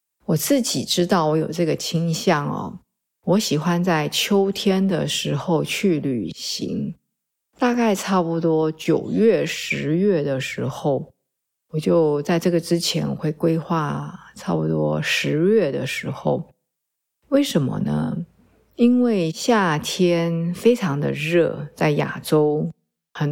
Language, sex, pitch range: Chinese, female, 150-185 Hz